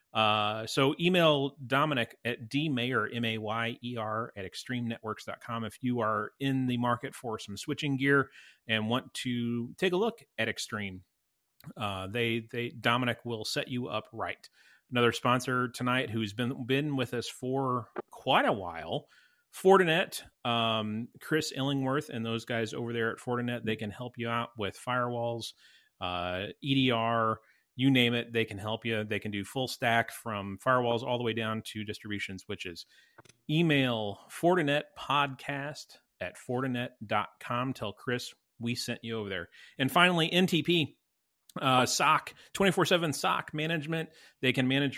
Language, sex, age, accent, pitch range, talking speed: English, male, 30-49, American, 115-145 Hz, 160 wpm